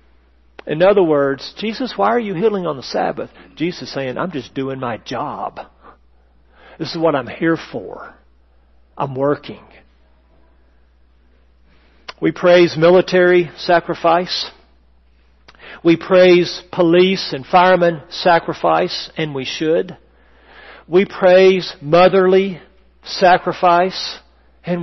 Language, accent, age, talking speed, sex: English, American, 50-69, 110 wpm, male